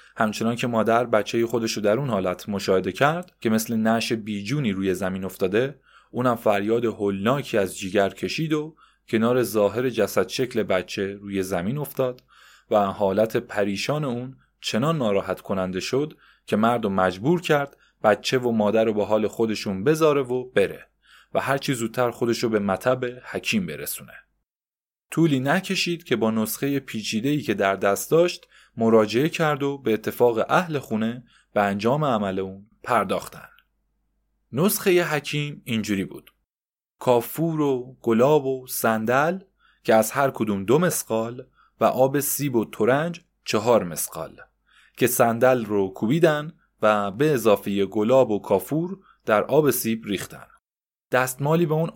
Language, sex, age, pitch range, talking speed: Persian, male, 20-39, 105-140 Hz, 140 wpm